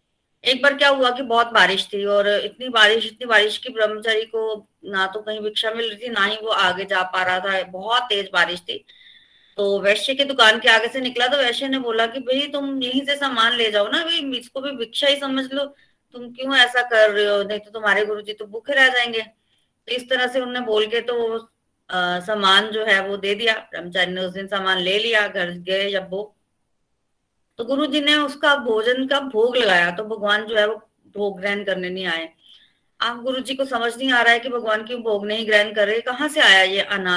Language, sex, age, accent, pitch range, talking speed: Hindi, female, 20-39, native, 200-255 Hz, 215 wpm